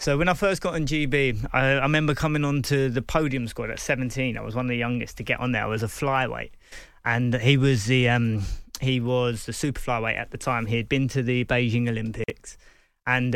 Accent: British